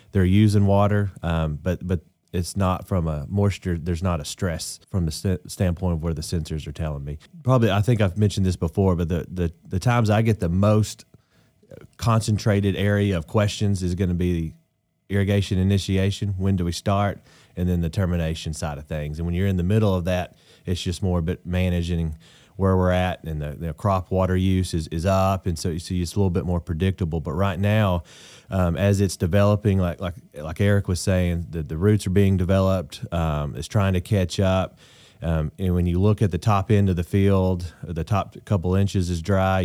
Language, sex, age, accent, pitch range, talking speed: English, male, 30-49, American, 85-100 Hz, 215 wpm